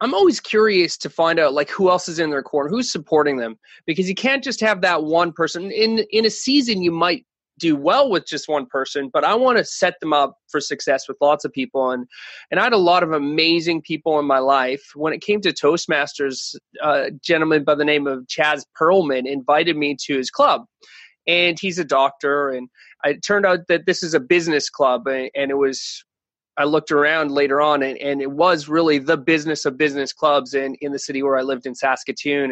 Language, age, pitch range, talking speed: English, 20-39, 145-185 Hz, 220 wpm